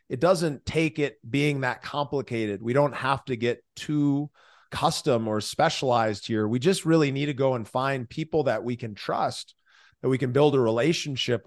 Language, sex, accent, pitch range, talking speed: English, male, American, 120-150 Hz, 190 wpm